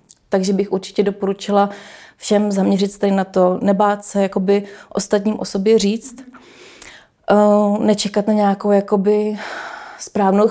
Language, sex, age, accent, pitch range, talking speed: Czech, female, 30-49, native, 195-210 Hz, 120 wpm